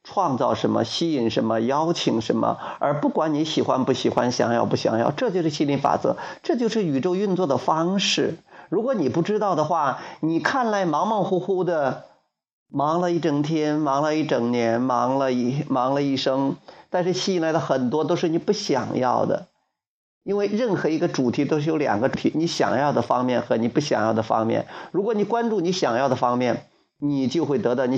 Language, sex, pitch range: Chinese, male, 130-175 Hz